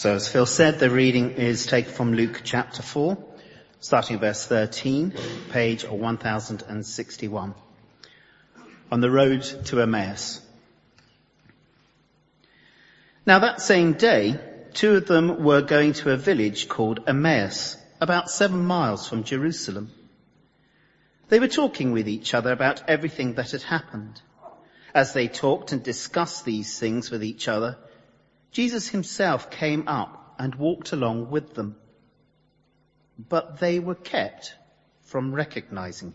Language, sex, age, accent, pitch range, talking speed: English, male, 40-59, British, 115-160 Hz, 130 wpm